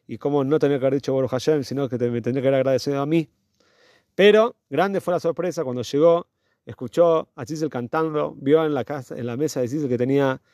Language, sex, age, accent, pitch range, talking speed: Spanish, male, 30-49, Argentinian, 125-165 Hz, 220 wpm